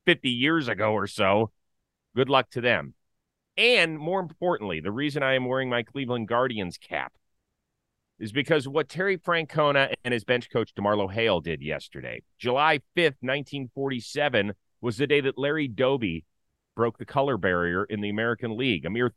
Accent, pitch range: American, 110-140 Hz